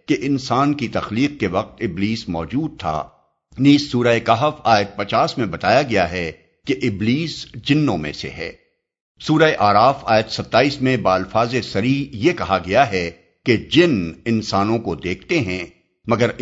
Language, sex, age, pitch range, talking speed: Urdu, male, 60-79, 100-130 Hz, 155 wpm